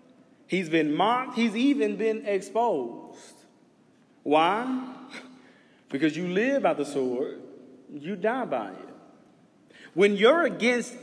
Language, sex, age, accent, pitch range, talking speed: English, male, 30-49, American, 220-285 Hz, 115 wpm